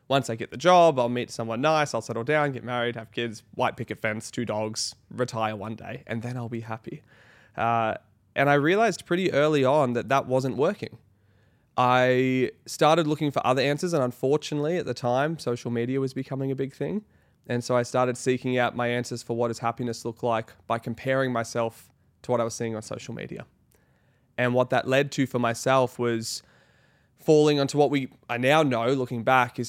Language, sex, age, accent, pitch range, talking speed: English, male, 20-39, Australian, 115-135 Hz, 200 wpm